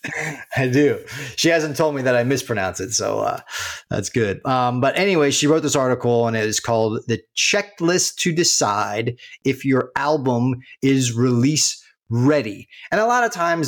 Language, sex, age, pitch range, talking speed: English, male, 30-49, 125-155 Hz, 175 wpm